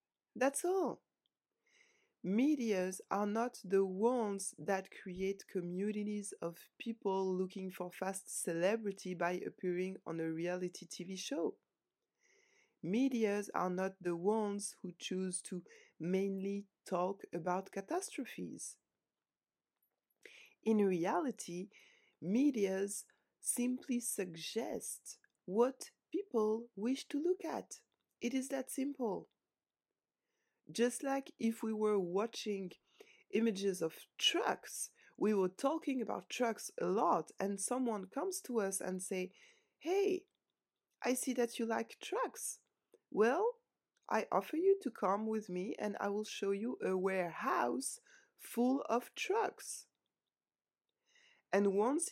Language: English